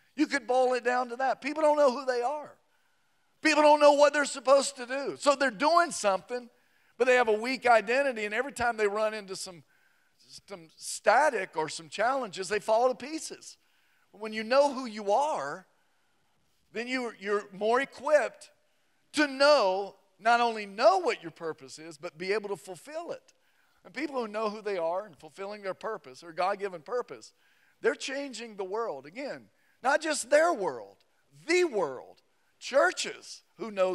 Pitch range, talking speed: 190-275 Hz, 175 wpm